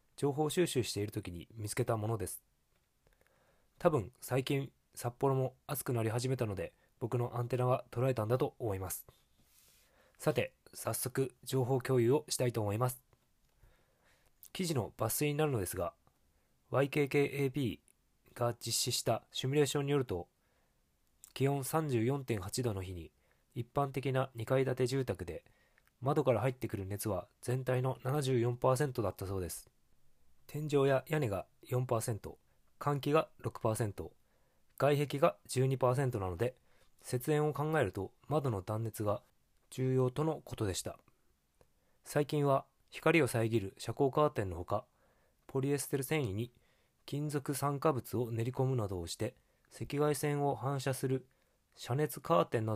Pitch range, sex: 110-140 Hz, male